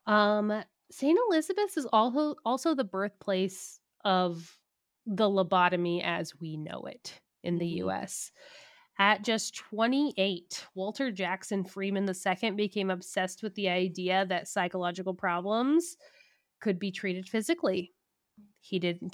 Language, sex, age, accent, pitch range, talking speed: English, female, 20-39, American, 180-220 Hz, 120 wpm